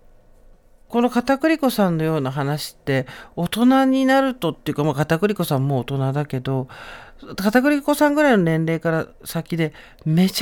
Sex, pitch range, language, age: male, 135-190 Hz, Japanese, 50-69